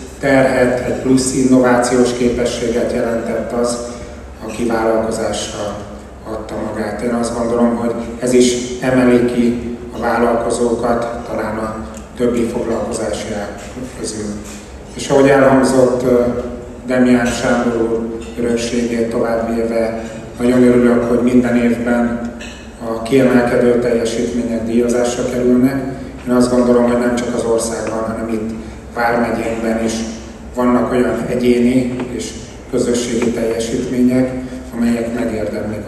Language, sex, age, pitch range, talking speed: Hungarian, male, 30-49, 115-125 Hz, 110 wpm